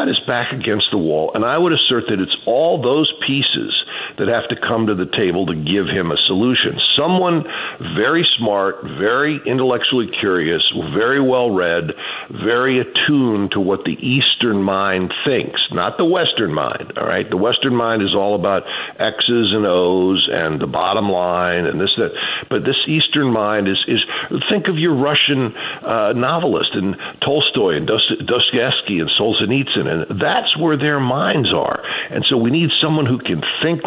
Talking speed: 170 wpm